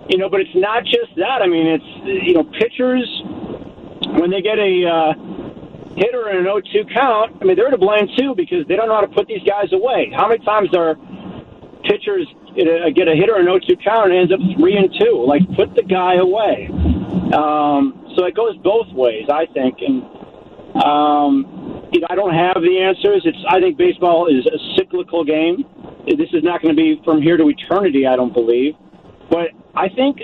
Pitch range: 160-260 Hz